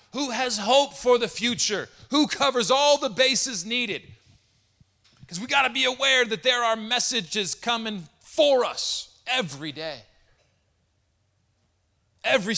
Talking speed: 135 wpm